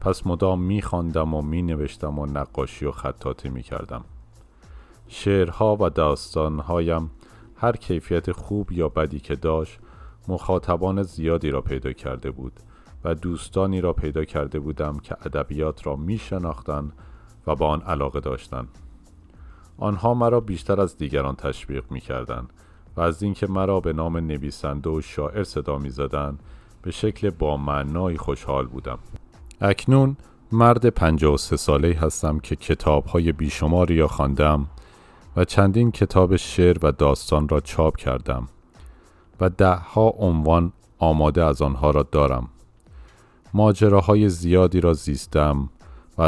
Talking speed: 125 wpm